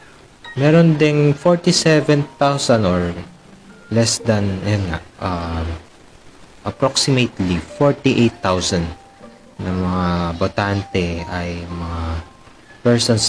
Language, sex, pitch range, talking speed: Filipino, male, 95-120 Hz, 70 wpm